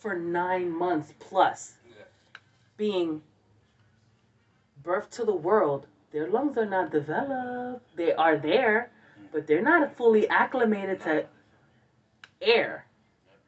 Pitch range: 135-215 Hz